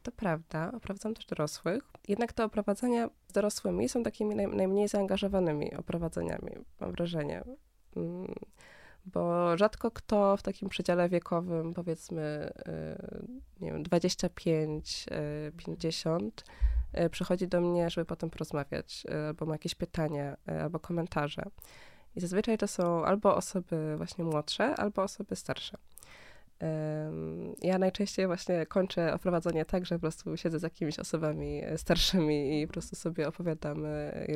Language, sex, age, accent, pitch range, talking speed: Polish, female, 20-39, native, 160-195 Hz, 120 wpm